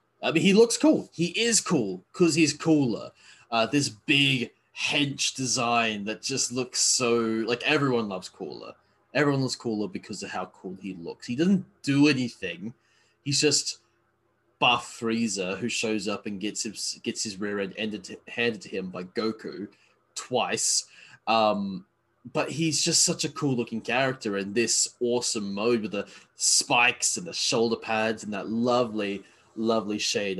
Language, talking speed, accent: English, 160 wpm, Australian